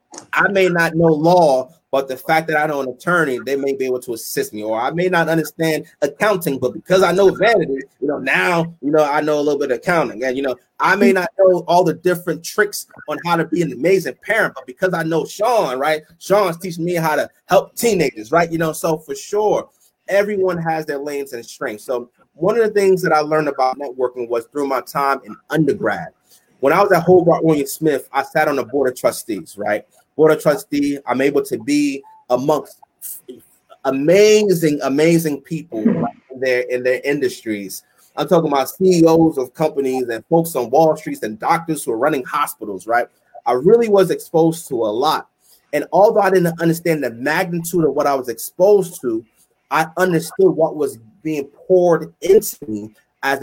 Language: English